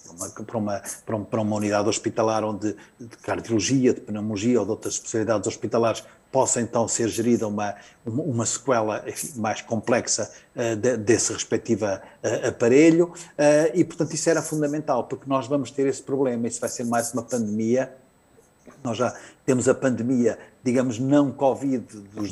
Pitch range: 110-140 Hz